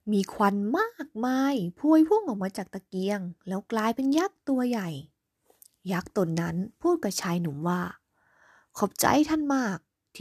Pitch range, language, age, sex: 180-255 Hz, Thai, 20-39, female